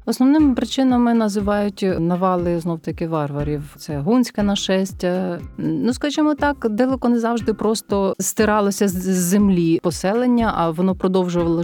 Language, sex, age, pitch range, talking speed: Ukrainian, female, 30-49, 160-200 Hz, 125 wpm